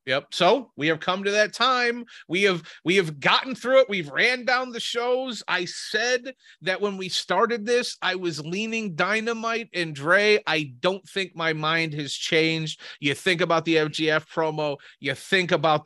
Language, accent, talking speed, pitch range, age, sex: English, American, 185 wpm, 135-165 Hz, 30-49, male